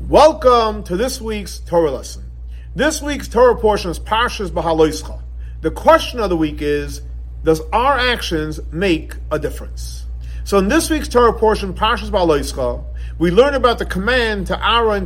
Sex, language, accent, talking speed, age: male, English, American, 160 wpm, 50-69